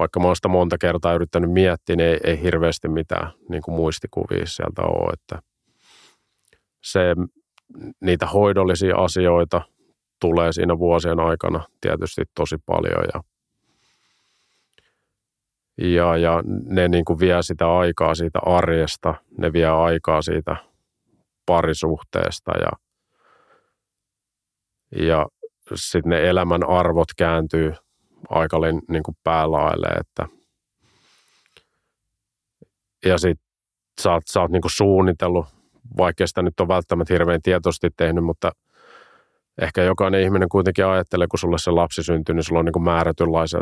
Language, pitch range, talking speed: Finnish, 80-90 Hz, 125 wpm